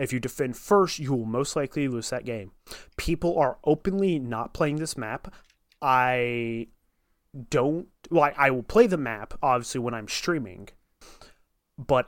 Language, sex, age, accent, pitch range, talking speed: English, male, 30-49, American, 115-150 Hz, 160 wpm